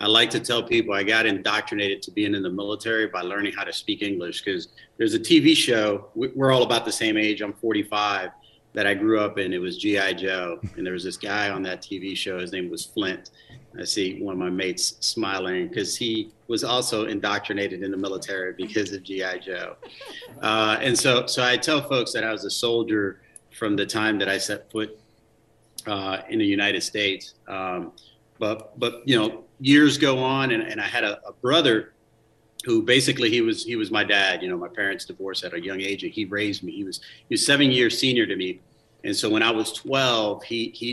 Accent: American